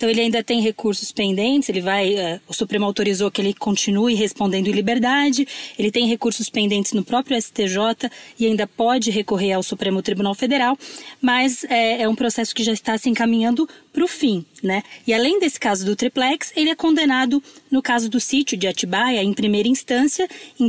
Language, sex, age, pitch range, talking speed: Portuguese, female, 20-39, 210-260 Hz, 185 wpm